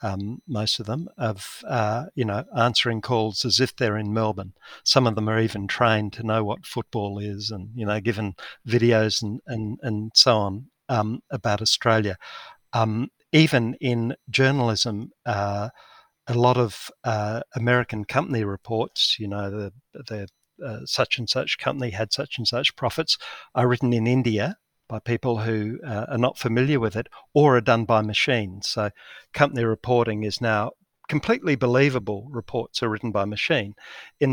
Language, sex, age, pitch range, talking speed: English, male, 50-69, 110-130 Hz, 170 wpm